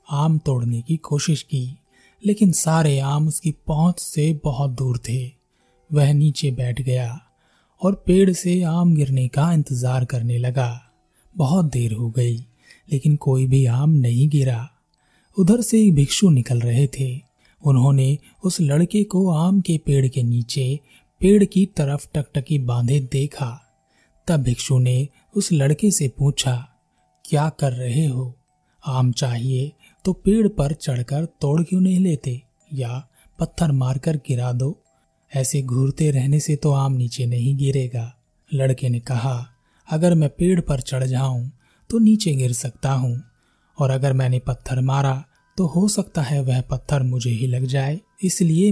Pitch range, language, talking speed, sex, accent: 130-160 Hz, Hindi, 135 wpm, male, native